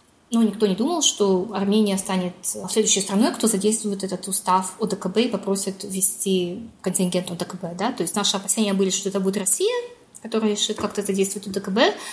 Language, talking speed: Russian, 170 wpm